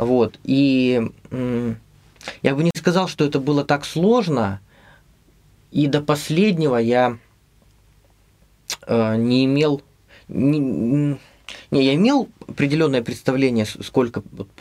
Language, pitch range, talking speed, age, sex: Russian, 115-145 Hz, 100 wpm, 20-39, male